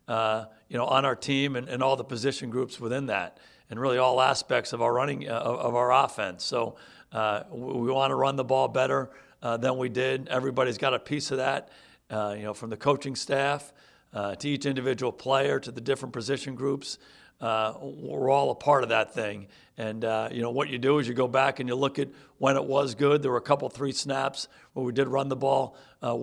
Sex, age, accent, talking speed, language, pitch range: male, 60-79, American, 235 wpm, English, 125-140 Hz